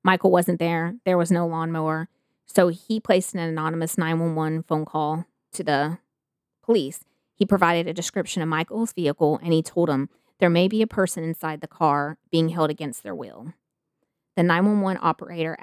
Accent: American